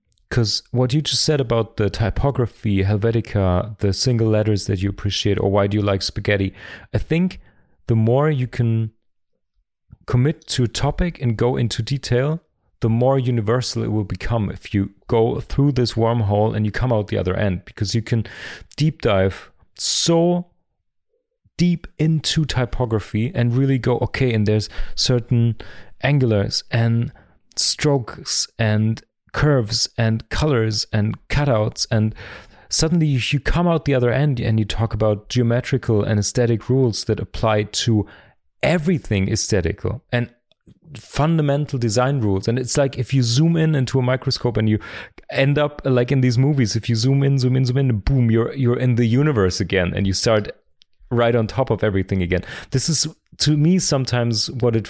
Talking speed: 165 wpm